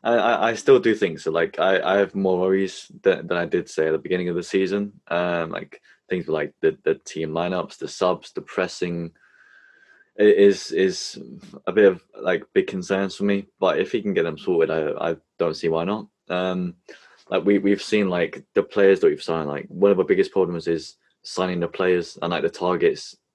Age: 20-39